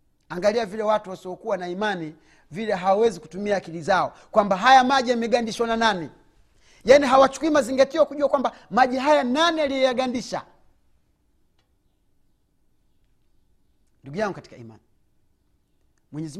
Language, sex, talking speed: Swahili, male, 115 wpm